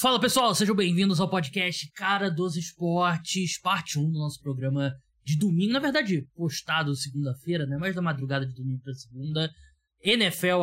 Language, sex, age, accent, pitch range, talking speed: Portuguese, male, 20-39, Brazilian, 140-180 Hz, 165 wpm